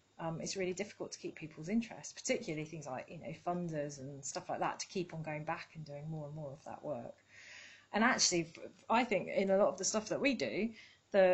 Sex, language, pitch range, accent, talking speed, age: female, English, 160-205 Hz, British, 240 wpm, 30-49